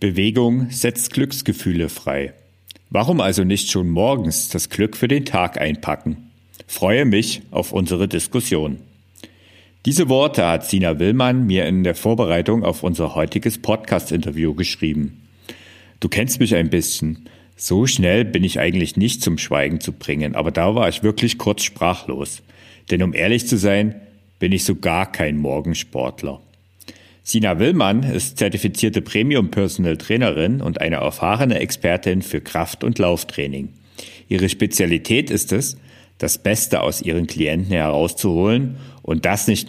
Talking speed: 140 wpm